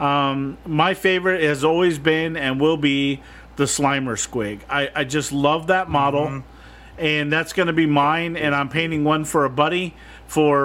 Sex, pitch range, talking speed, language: male, 135-160 Hz, 180 wpm, English